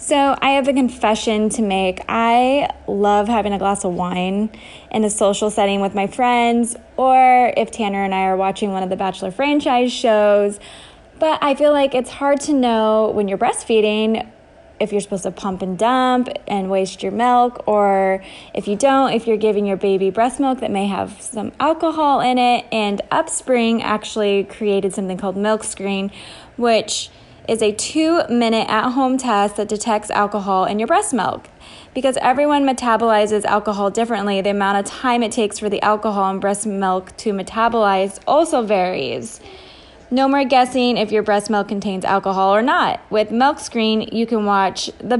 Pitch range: 200-245 Hz